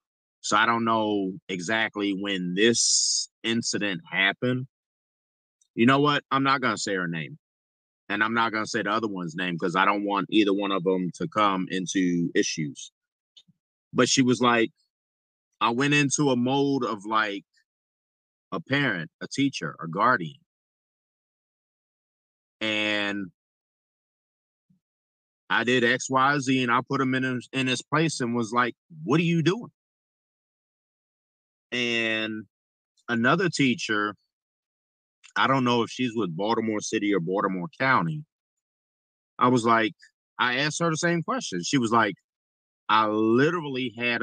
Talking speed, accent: 145 wpm, American